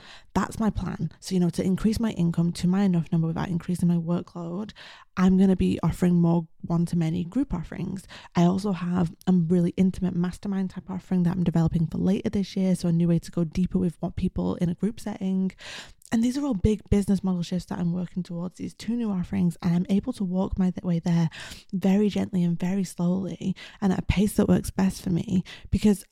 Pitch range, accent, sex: 175-195 Hz, British, female